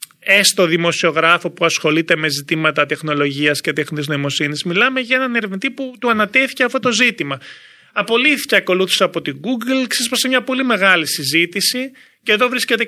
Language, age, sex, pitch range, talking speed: Greek, 30-49, male, 155-230 Hz, 155 wpm